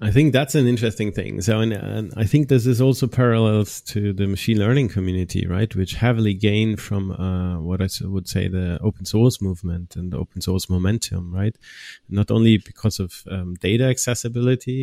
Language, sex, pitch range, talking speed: English, male, 95-115 Hz, 190 wpm